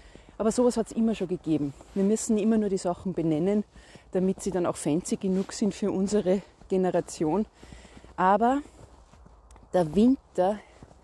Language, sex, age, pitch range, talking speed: German, female, 30-49, 185-230 Hz, 145 wpm